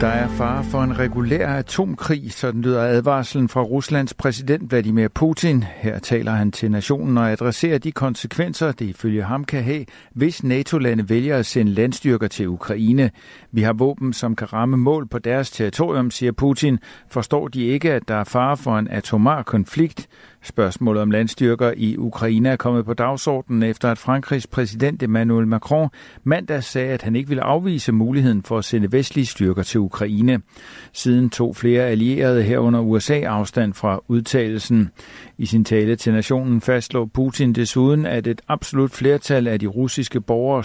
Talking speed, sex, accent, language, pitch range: 170 wpm, male, native, Danish, 110-135 Hz